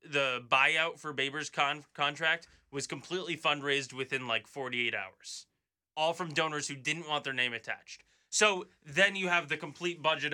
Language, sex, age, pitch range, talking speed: English, male, 20-39, 135-170 Hz, 170 wpm